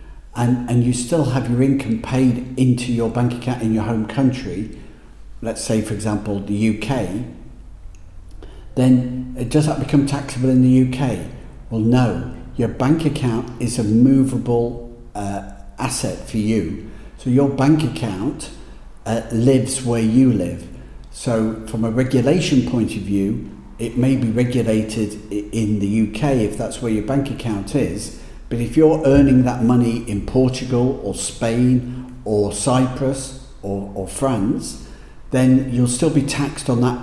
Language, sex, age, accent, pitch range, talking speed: English, male, 50-69, British, 110-125 Hz, 150 wpm